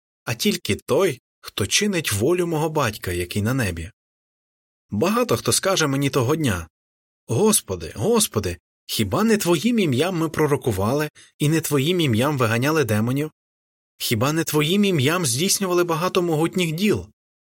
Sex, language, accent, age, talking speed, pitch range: male, Ukrainian, native, 20-39, 135 wpm, 100-155 Hz